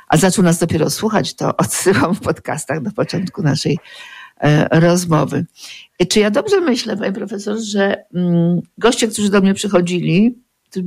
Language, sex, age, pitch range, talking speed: Polish, female, 50-69, 180-220 Hz, 150 wpm